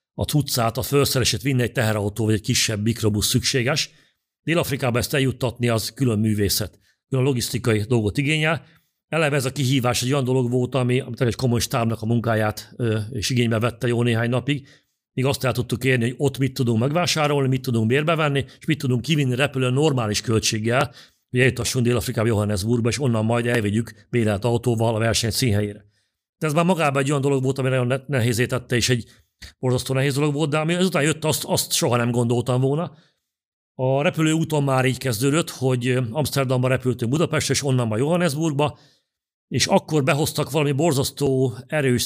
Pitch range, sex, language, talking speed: 120-140 Hz, male, Hungarian, 180 wpm